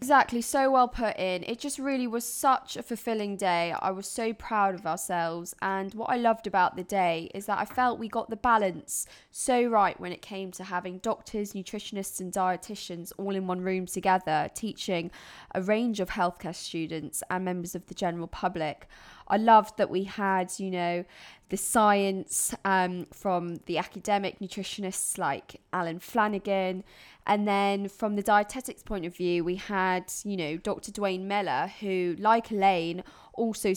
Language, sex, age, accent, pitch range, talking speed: English, female, 20-39, British, 180-215 Hz, 175 wpm